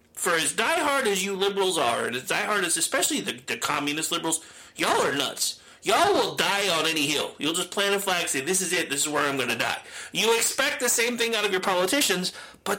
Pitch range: 170-280 Hz